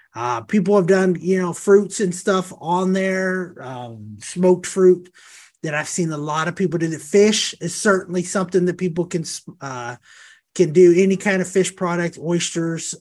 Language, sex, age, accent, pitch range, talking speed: English, male, 30-49, American, 155-195 Hz, 180 wpm